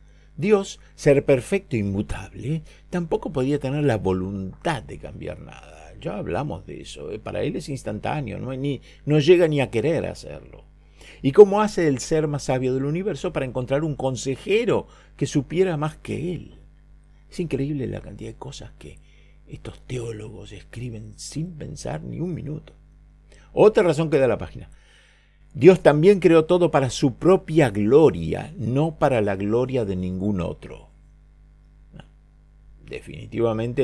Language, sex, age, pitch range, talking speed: Spanish, male, 50-69, 110-155 Hz, 145 wpm